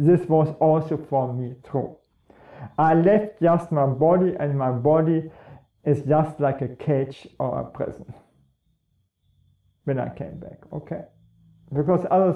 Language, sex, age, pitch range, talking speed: English, male, 50-69, 135-170 Hz, 140 wpm